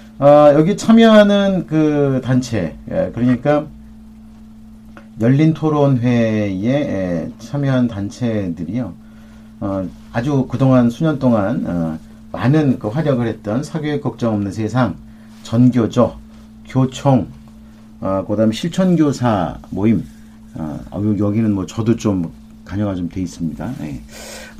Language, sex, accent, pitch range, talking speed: English, male, Korean, 110-150 Hz, 95 wpm